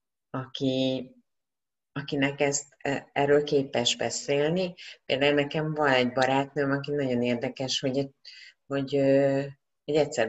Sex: female